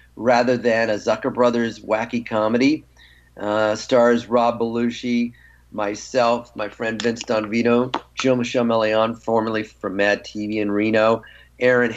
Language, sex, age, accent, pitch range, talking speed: English, male, 40-59, American, 110-120 Hz, 130 wpm